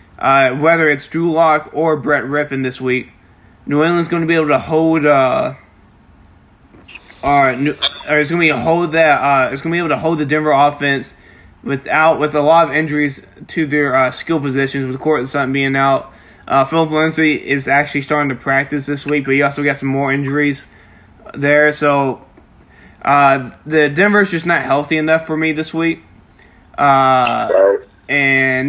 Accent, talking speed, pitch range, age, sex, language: American, 180 wpm, 135-160 Hz, 20-39, male, English